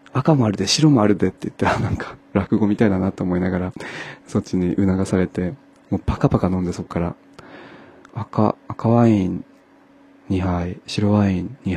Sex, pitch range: male, 90-110 Hz